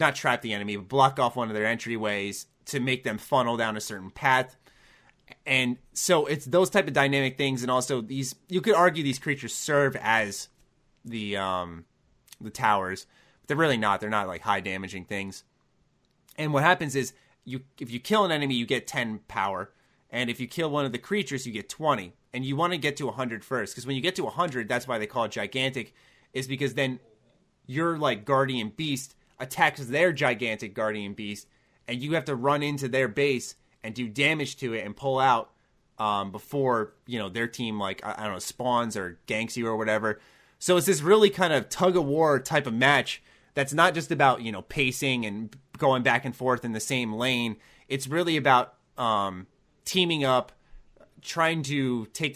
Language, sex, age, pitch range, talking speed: English, male, 30-49, 110-145 Hz, 205 wpm